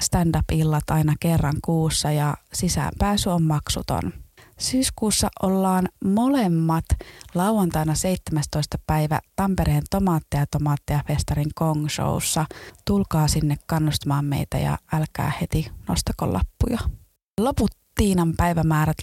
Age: 20-39